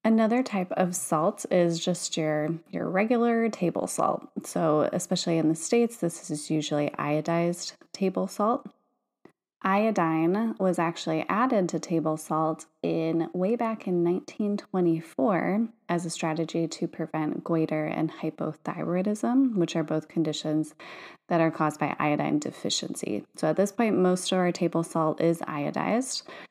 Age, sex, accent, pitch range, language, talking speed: 20-39, female, American, 160-190 Hz, English, 145 wpm